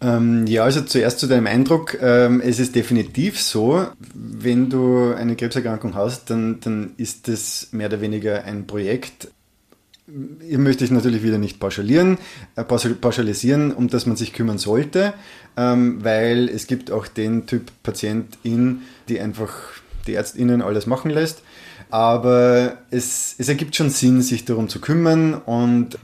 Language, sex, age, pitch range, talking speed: German, male, 20-39, 110-125 Hz, 145 wpm